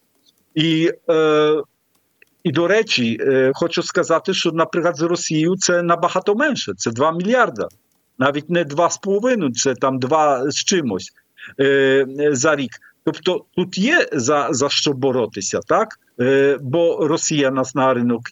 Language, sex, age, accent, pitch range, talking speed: Ukrainian, male, 50-69, Polish, 125-165 Hz, 140 wpm